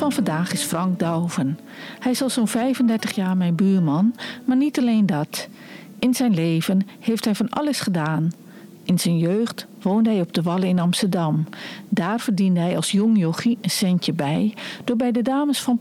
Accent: Dutch